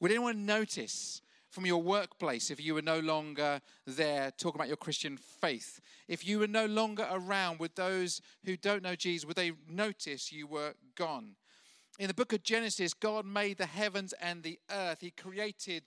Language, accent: English, British